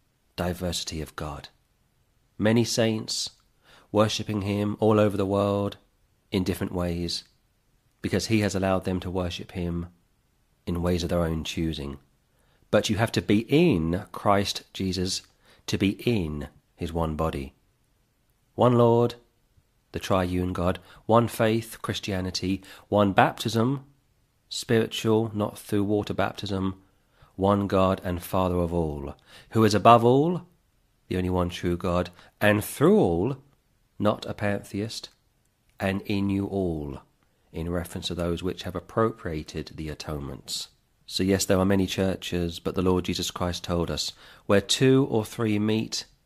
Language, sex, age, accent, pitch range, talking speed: English, male, 40-59, British, 90-110 Hz, 140 wpm